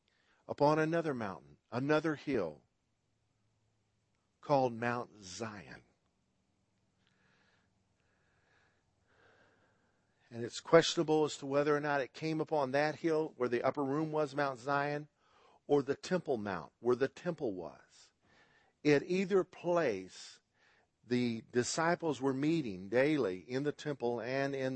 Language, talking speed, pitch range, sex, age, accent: English, 120 wpm, 110-150 Hz, male, 50-69, American